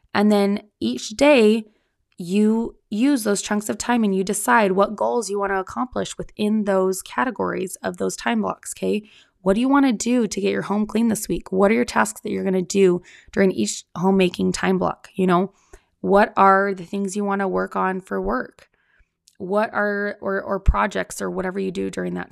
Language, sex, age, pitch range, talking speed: English, female, 20-39, 180-210 Hz, 210 wpm